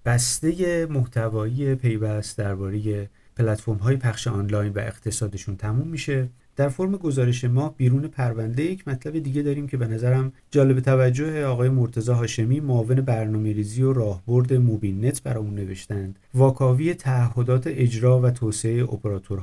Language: Persian